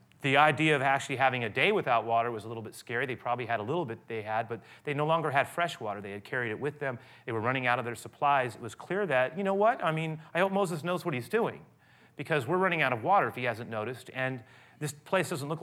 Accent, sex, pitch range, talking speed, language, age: American, male, 120-150 Hz, 280 wpm, English, 30-49